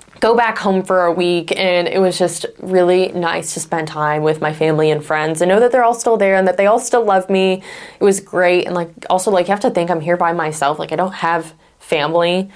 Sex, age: female, 20-39